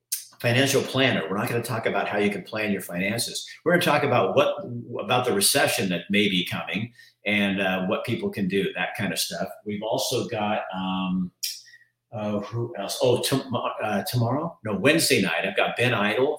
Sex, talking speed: male, 205 wpm